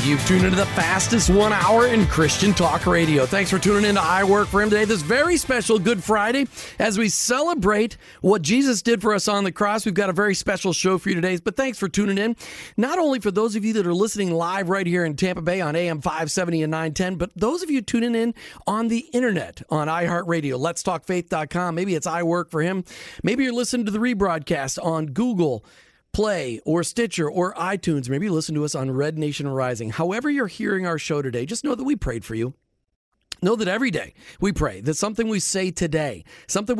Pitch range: 160-215 Hz